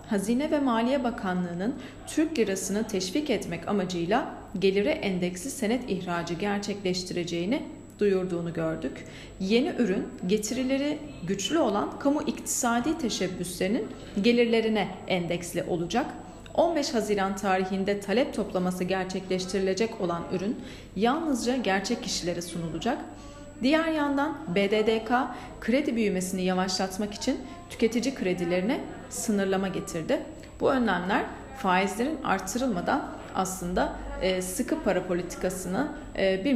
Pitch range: 185-255 Hz